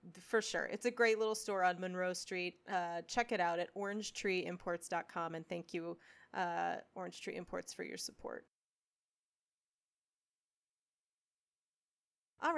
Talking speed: 130 wpm